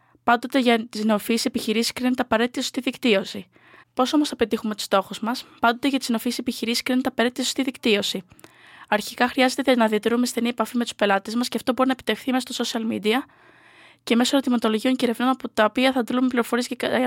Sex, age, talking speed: female, 20-39, 195 wpm